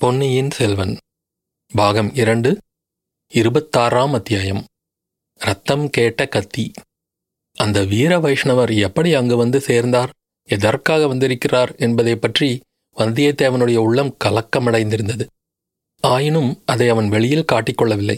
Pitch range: 115-145 Hz